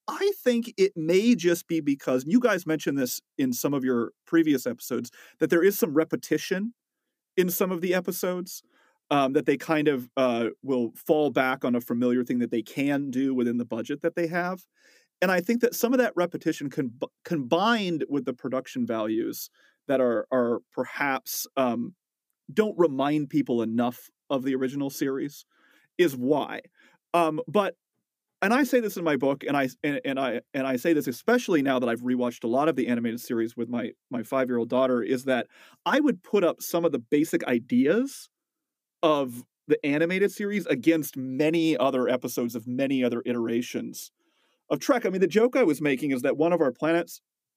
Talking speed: 195 wpm